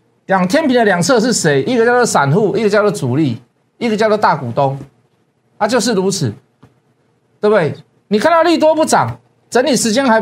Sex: male